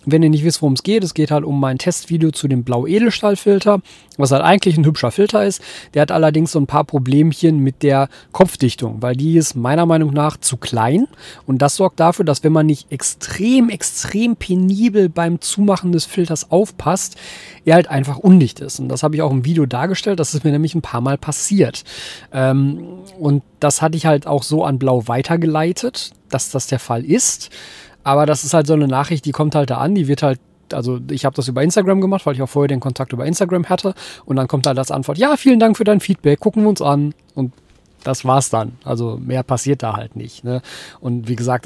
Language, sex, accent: German, male, German